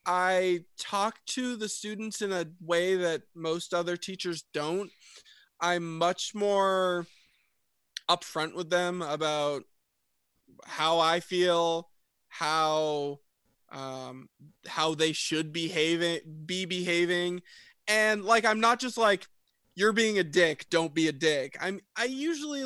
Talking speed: 125 wpm